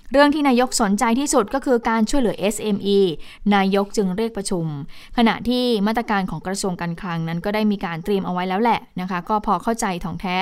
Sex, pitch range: female, 185-225 Hz